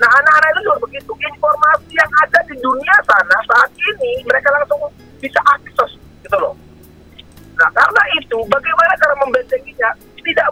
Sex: male